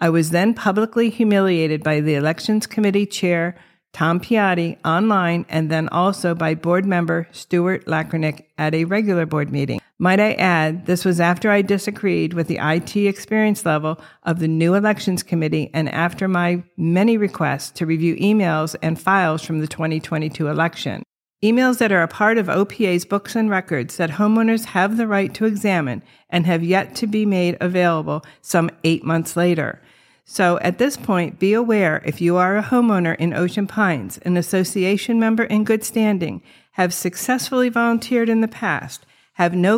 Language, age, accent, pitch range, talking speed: English, 50-69, American, 165-210 Hz, 170 wpm